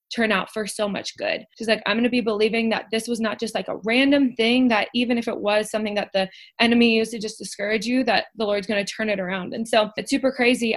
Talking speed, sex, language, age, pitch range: 275 wpm, female, English, 20-39, 195-225 Hz